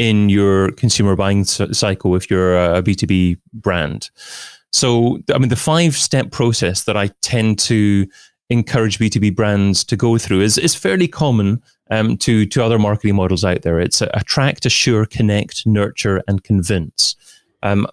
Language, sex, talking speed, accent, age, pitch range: English, male, 155 wpm, British, 30-49, 100-120 Hz